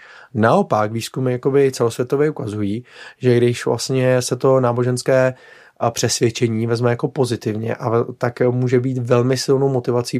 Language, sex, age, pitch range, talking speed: Czech, male, 30-49, 115-130 Hz, 125 wpm